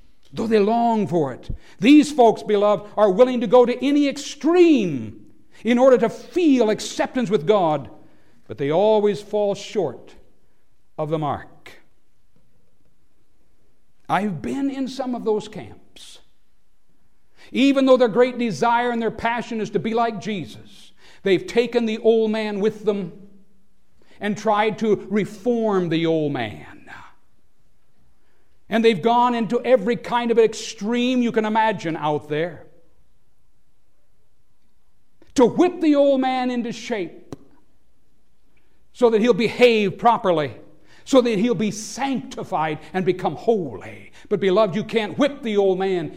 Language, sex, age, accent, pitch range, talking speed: English, male, 60-79, American, 190-240 Hz, 135 wpm